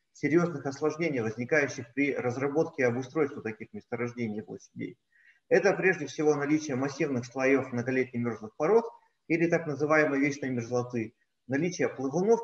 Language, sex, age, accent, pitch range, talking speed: Russian, male, 30-49, native, 125-160 Hz, 130 wpm